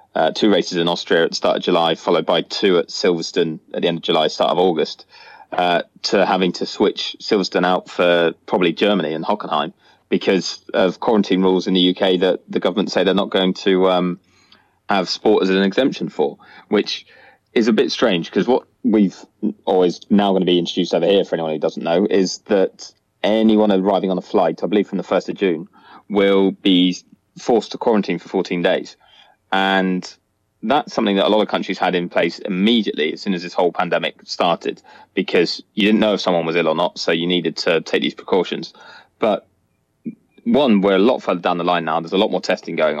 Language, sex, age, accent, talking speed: English, male, 20-39, British, 210 wpm